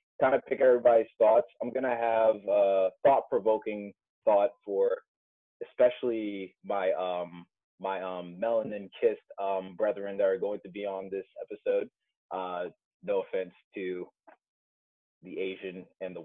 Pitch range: 105-170 Hz